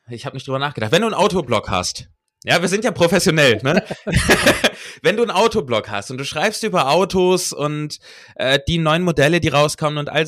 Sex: male